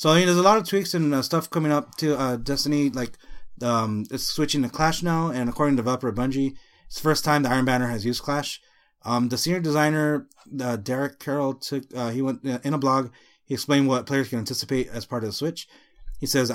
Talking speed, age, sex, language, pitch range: 240 wpm, 30-49, male, English, 120-145 Hz